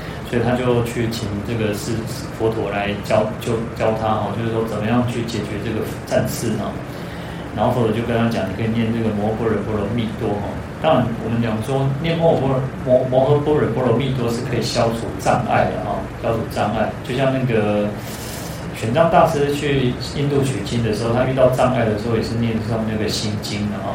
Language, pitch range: Chinese, 110-130 Hz